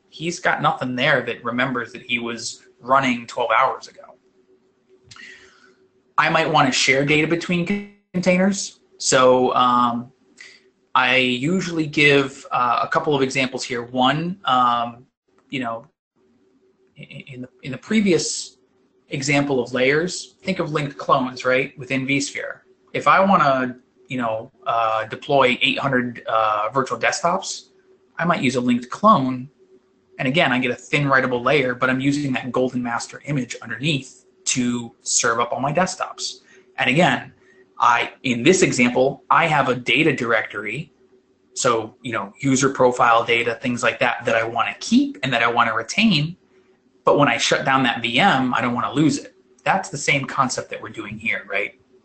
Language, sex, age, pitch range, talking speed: English, male, 20-39, 125-155 Hz, 160 wpm